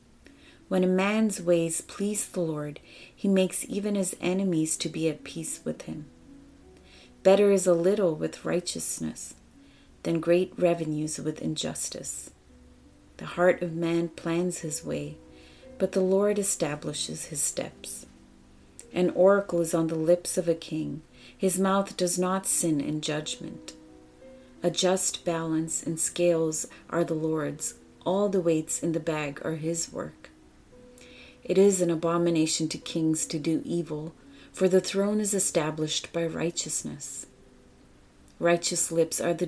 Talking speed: 145 wpm